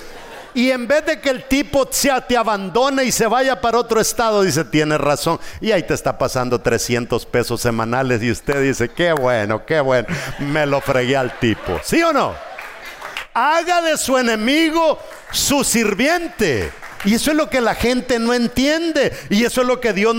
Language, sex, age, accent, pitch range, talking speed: English, male, 50-69, Mexican, 175-260 Hz, 185 wpm